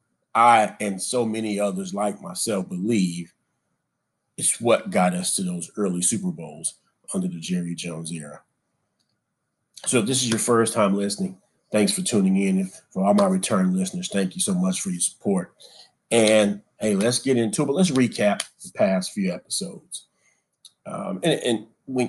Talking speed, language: 170 wpm, English